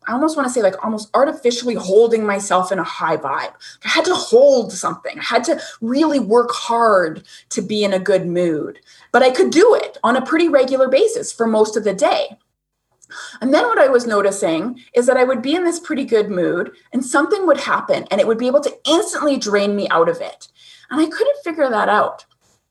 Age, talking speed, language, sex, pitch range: 20-39, 220 wpm, English, female, 200-285 Hz